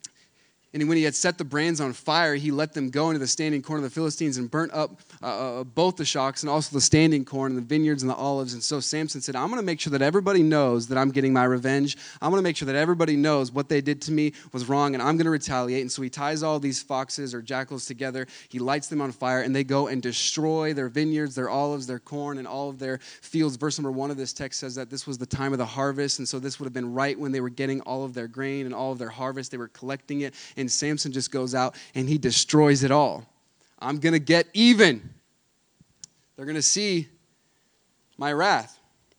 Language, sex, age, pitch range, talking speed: English, male, 20-39, 130-150 Hz, 255 wpm